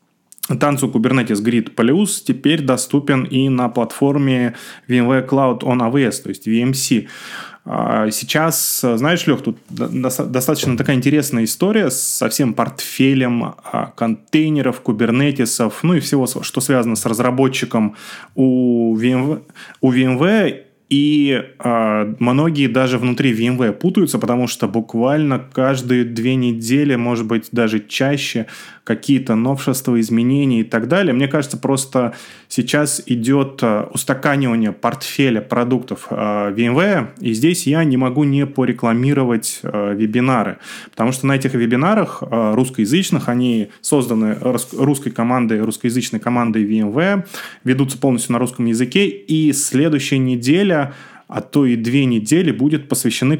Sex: male